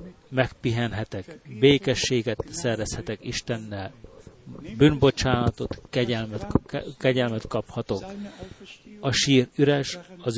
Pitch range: 115-140 Hz